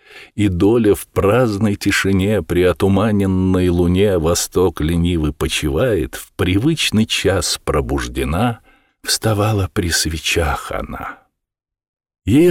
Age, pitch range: 50-69, 85-125 Hz